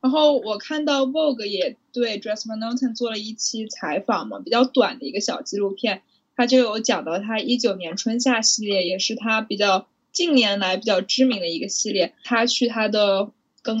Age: 10-29